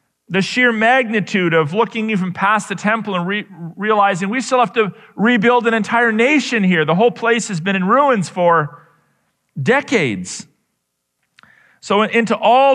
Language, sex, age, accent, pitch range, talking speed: English, male, 40-59, American, 155-210 Hz, 150 wpm